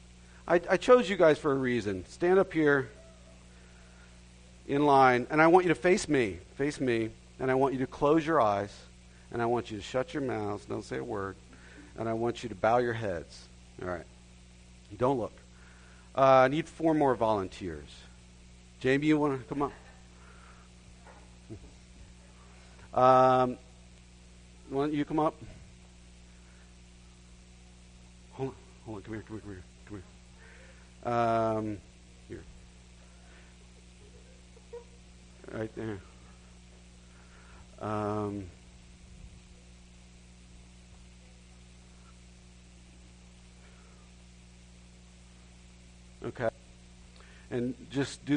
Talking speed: 115 wpm